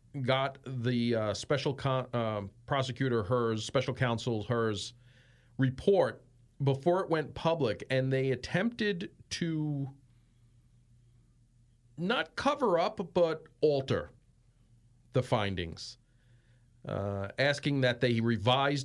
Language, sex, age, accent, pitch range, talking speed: English, male, 40-59, American, 120-140 Hz, 100 wpm